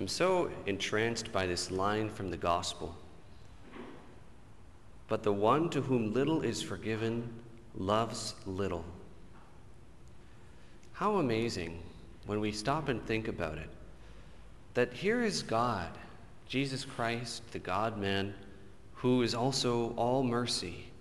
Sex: male